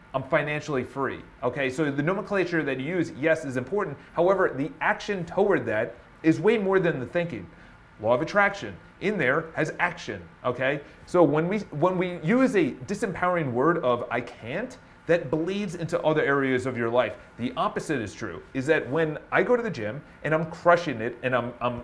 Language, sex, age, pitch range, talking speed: English, male, 30-49, 130-180 Hz, 195 wpm